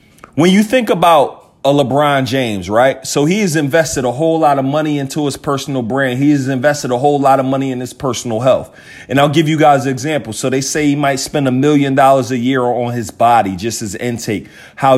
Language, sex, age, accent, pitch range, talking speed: English, male, 30-49, American, 130-155 Hz, 230 wpm